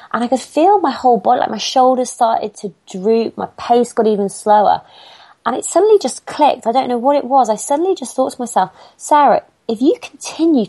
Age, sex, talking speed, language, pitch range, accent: 30-49, female, 220 wpm, English, 175-255 Hz, British